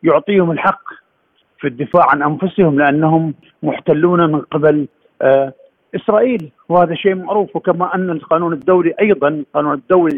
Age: 50-69